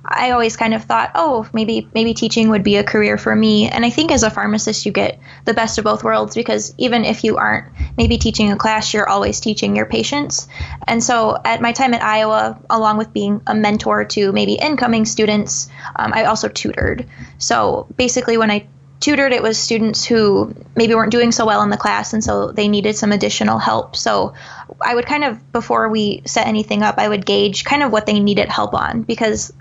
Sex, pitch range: female, 205-235 Hz